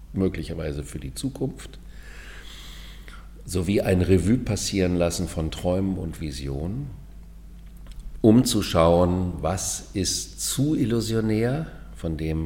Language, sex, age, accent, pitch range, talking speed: German, male, 50-69, German, 75-95 Hz, 105 wpm